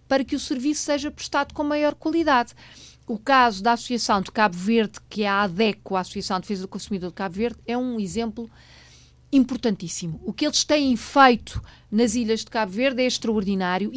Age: 50-69